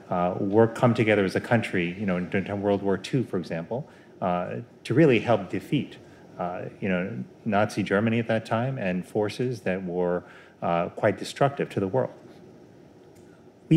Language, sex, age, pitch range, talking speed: English, male, 30-49, 95-120 Hz, 170 wpm